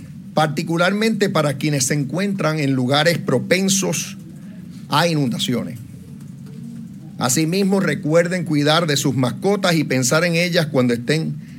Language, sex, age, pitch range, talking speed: Spanish, male, 50-69, 140-185 Hz, 115 wpm